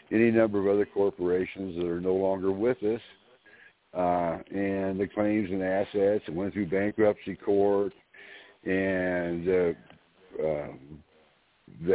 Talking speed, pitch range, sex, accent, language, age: 130 wpm, 95-115 Hz, male, American, English, 60-79